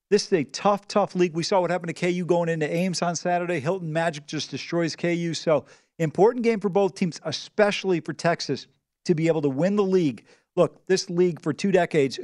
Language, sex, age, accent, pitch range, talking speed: English, male, 40-59, American, 170-200 Hz, 215 wpm